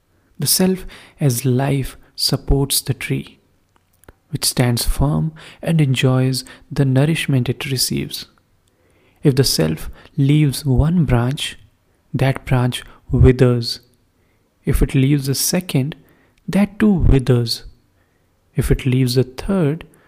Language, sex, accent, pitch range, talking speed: English, male, Indian, 115-145 Hz, 115 wpm